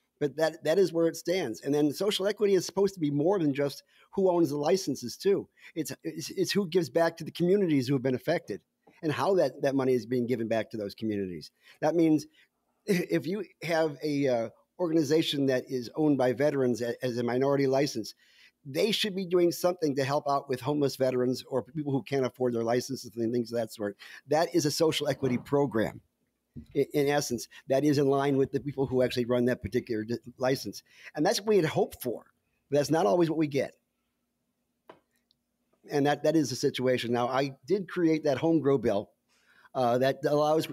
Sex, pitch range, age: male, 130-160 Hz, 50-69